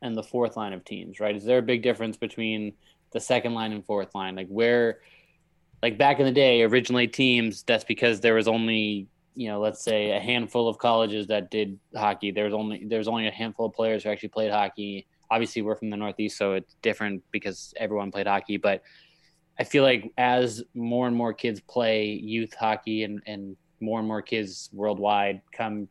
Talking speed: 205 wpm